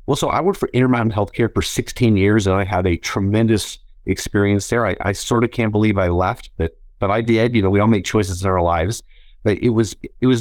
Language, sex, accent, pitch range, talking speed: English, male, American, 90-115 Hz, 250 wpm